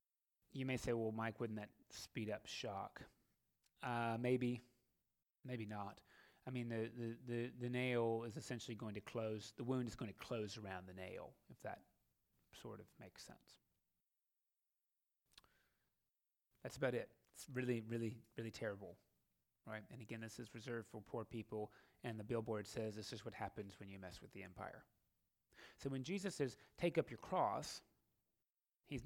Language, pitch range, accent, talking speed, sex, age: English, 110-130 Hz, American, 165 wpm, male, 30-49